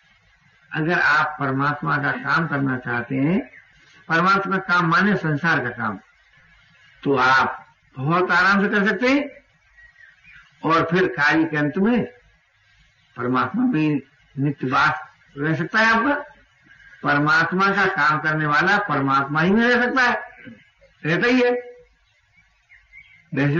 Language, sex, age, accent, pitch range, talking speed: Hindi, male, 60-79, native, 140-190 Hz, 125 wpm